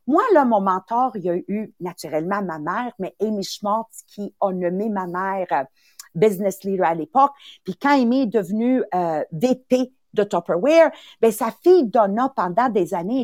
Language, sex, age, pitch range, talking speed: English, female, 50-69, 205-280 Hz, 175 wpm